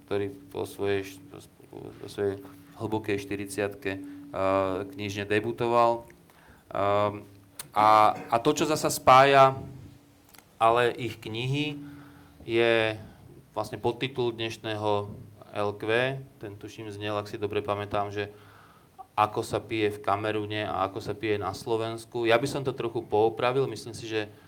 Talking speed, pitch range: 125 wpm, 105-120 Hz